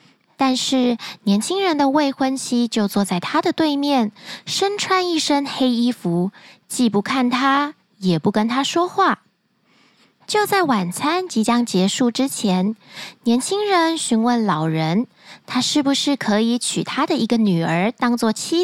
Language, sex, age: Chinese, female, 20-39